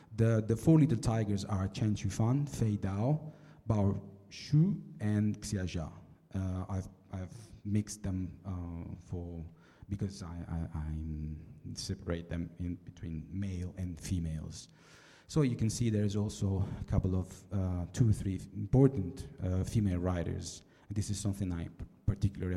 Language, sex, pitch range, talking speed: Italian, male, 90-105 Hz, 150 wpm